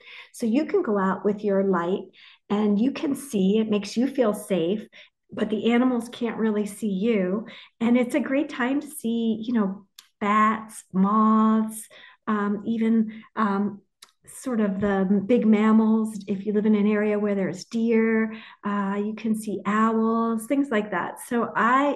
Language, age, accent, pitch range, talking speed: English, 40-59, American, 205-230 Hz, 170 wpm